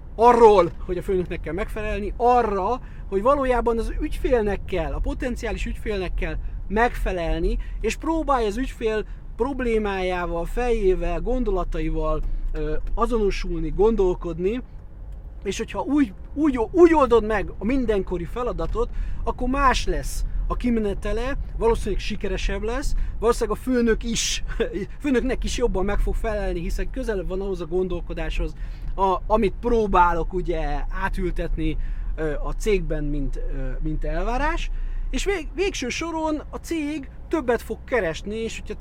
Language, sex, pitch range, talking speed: Hungarian, male, 180-240 Hz, 130 wpm